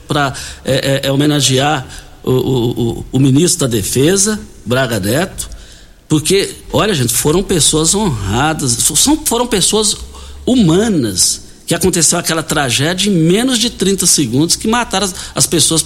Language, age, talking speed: Portuguese, 60-79, 130 wpm